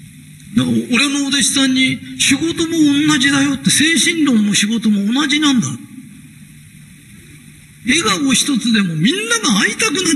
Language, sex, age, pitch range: Japanese, male, 40-59, 200-280 Hz